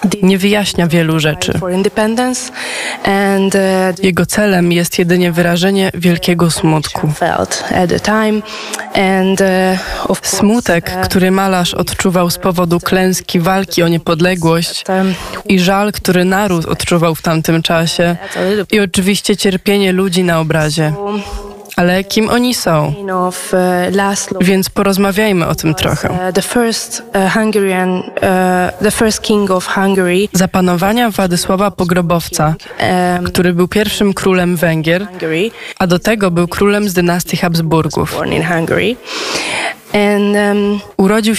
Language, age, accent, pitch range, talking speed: Polish, 20-39, native, 175-200 Hz, 90 wpm